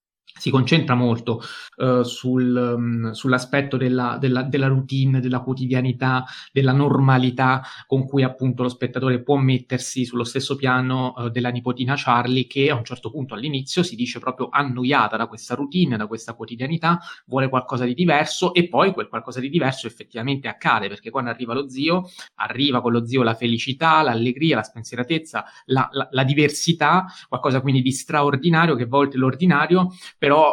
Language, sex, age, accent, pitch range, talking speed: Italian, male, 20-39, native, 120-140 Hz, 155 wpm